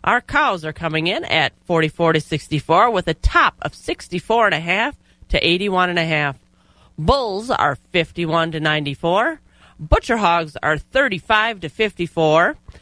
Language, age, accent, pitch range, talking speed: English, 40-59, American, 155-200 Hz, 125 wpm